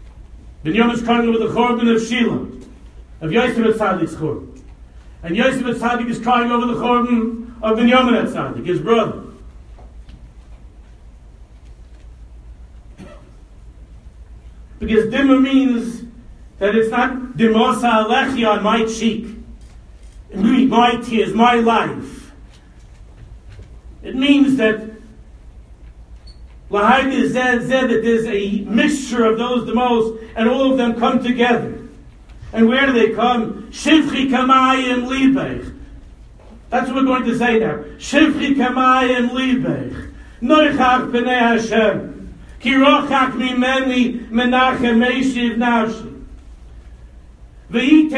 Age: 60-79